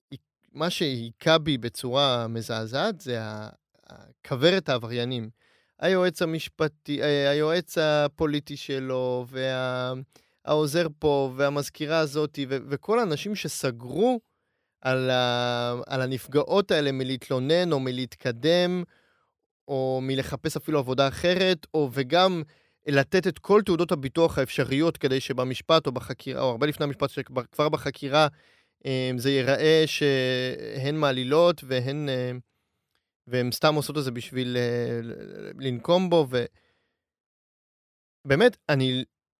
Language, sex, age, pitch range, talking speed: Hebrew, male, 30-49, 125-160 Hz, 100 wpm